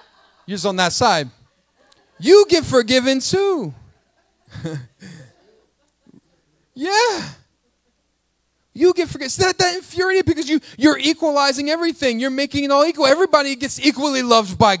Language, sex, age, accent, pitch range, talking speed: English, male, 30-49, American, 205-290 Hz, 130 wpm